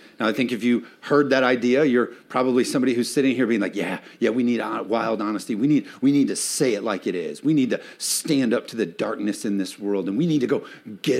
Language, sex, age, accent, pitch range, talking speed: English, male, 40-59, American, 110-140 Hz, 265 wpm